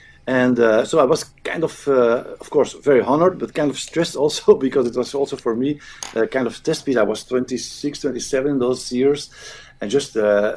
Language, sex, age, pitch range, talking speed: English, male, 50-69, 120-145 Hz, 215 wpm